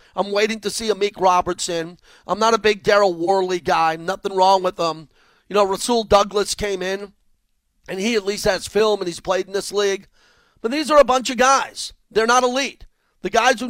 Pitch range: 175-210 Hz